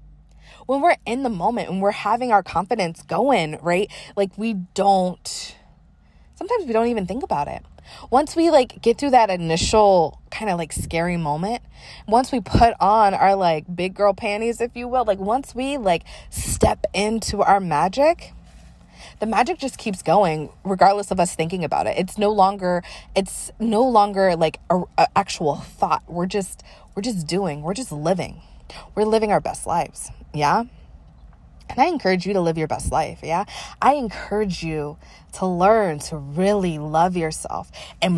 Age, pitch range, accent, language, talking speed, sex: 20-39, 175-235 Hz, American, English, 175 wpm, female